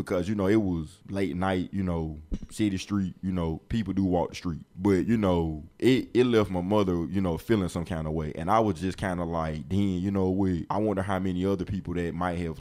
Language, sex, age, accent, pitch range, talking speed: English, male, 20-39, American, 85-100 Hz, 245 wpm